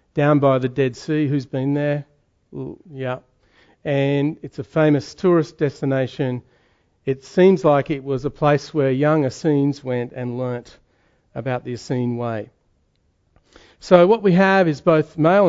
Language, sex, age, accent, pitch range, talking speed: English, male, 40-59, Australian, 130-160 Hz, 150 wpm